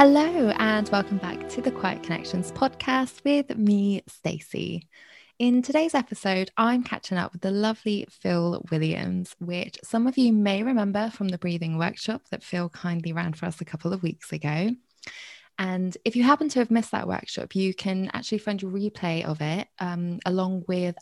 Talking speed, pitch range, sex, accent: 185 wpm, 175-225 Hz, female, British